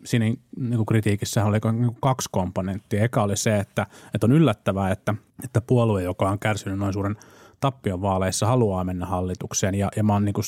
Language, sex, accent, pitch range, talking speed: Finnish, male, native, 100-115 Hz, 145 wpm